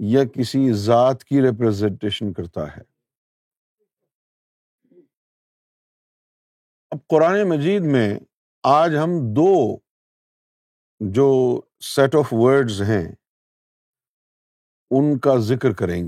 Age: 50-69